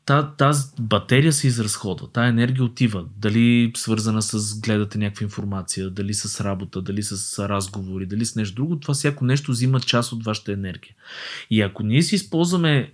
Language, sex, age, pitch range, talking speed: Bulgarian, male, 20-39, 105-140 Hz, 170 wpm